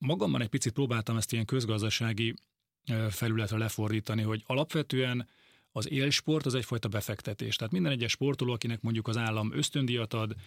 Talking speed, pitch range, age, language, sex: 150 wpm, 110-130 Hz, 30-49, Hungarian, male